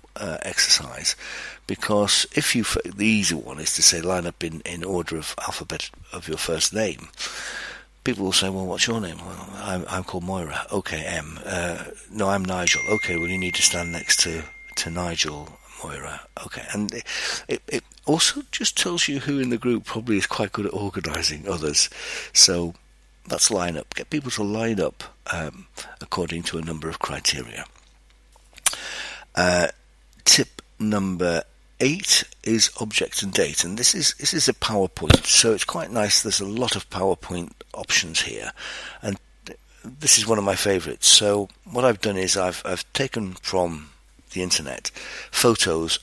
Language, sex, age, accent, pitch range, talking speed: English, male, 60-79, British, 85-105 Hz, 175 wpm